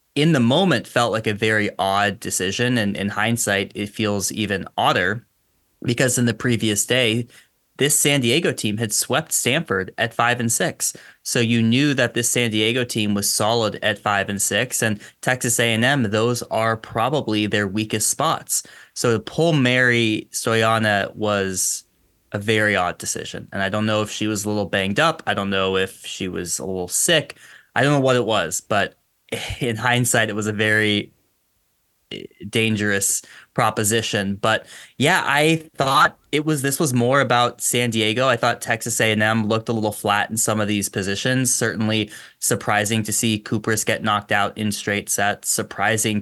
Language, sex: English, male